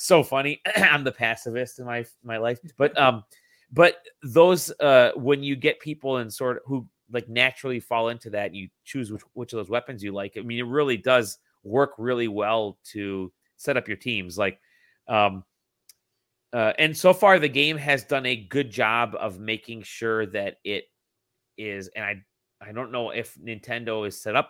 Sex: male